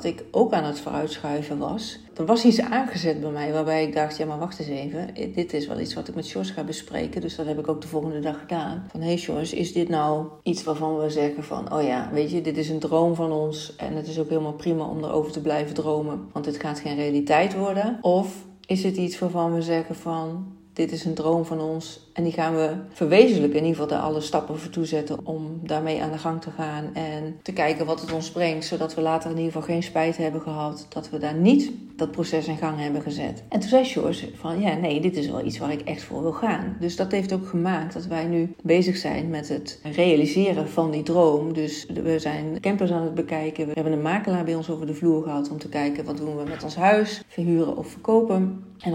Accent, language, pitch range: Dutch, Dutch, 155-170 Hz